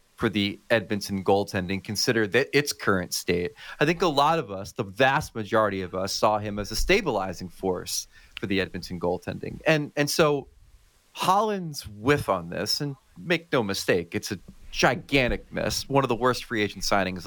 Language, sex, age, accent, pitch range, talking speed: English, male, 30-49, American, 95-120 Hz, 180 wpm